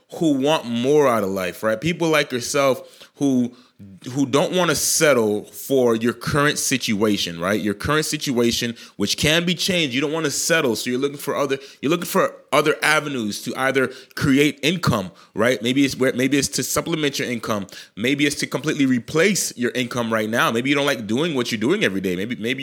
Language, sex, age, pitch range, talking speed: English, male, 30-49, 115-145 Hz, 205 wpm